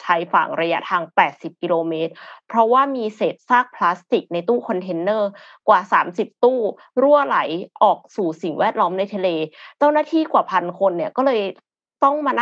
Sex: female